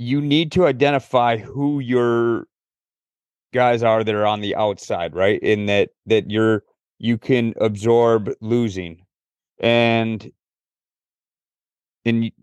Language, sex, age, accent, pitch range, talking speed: English, male, 30-49, American, 110-130 Hz, 115 wpm